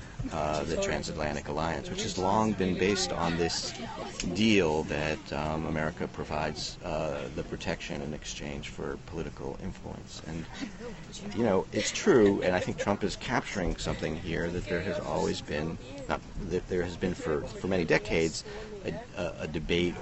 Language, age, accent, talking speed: English, 30-49, American, 160 wpm